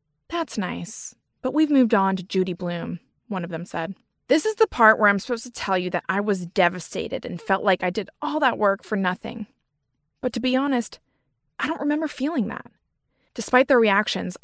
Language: English